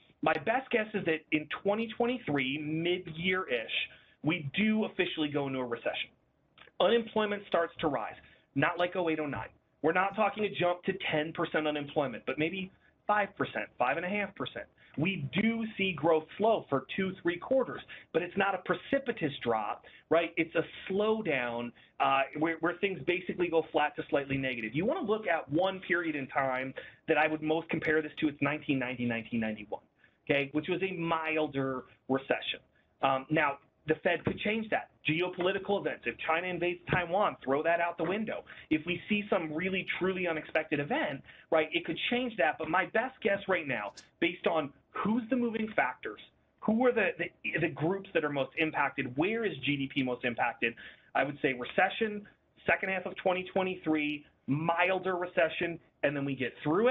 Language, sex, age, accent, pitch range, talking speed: English, male, 30-49, American, 145-195 Hz, 175 wpm